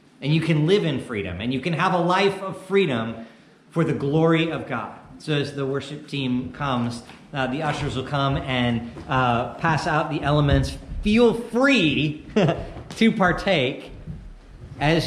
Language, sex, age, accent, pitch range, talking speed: English, male, 40-59, American, 130-175 Hz, 165 wpm